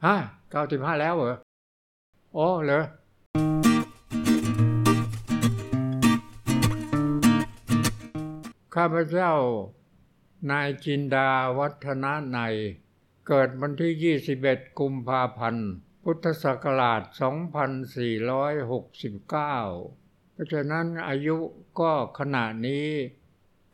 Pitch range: 115-155 Hz